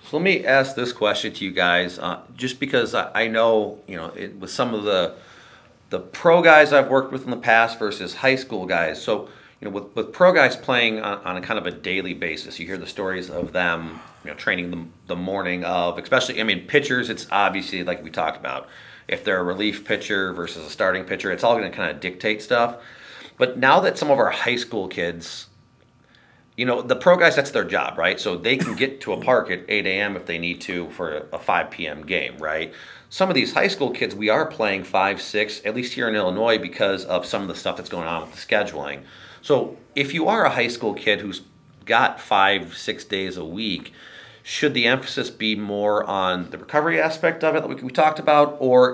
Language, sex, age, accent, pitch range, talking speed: English, male, 40-59, American, 90-125 Hz, 230 wpm